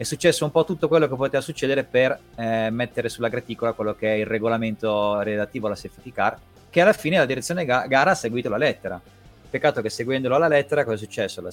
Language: Italian